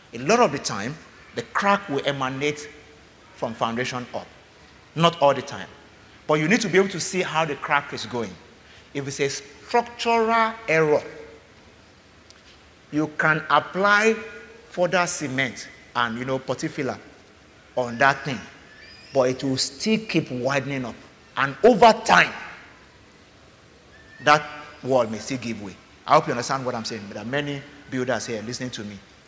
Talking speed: 160 wpm